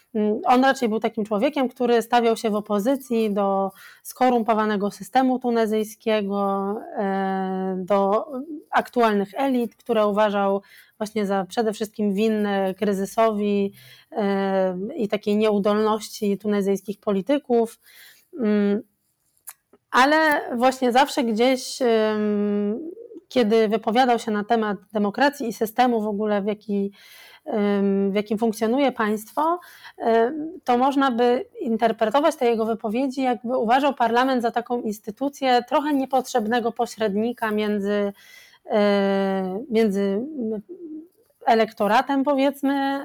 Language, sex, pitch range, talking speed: English, female, 210-255 Hz, 95 wpm